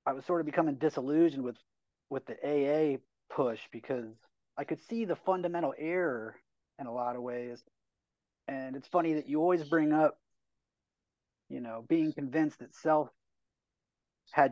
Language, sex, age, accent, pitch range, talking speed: English, male, 30-49, American, 130-170 Hz, 155 wpm